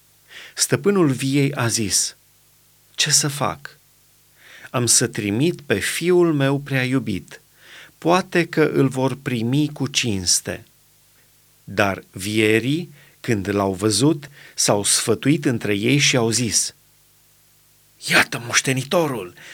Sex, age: male, 30-49